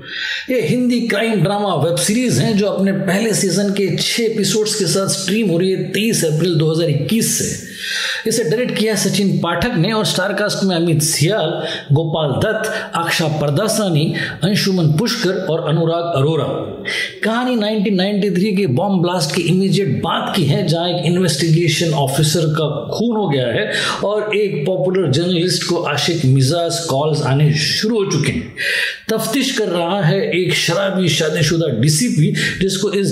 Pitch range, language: 165-210 Hz, Hindi